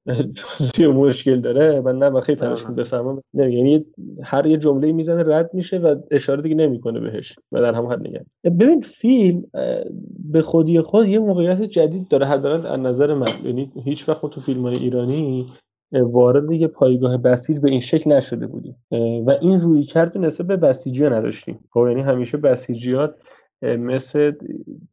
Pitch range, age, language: 125-165 Hz, 30-49, Persian